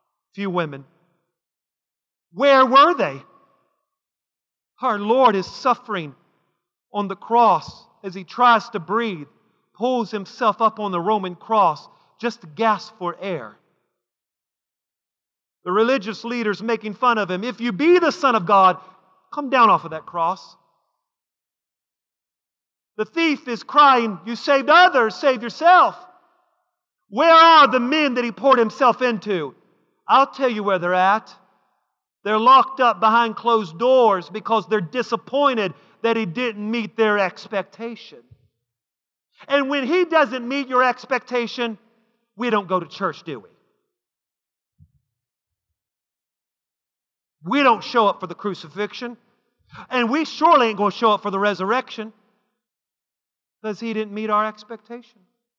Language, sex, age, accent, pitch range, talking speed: English, male, 40-59, American, 190-250 Hz, 135 wpm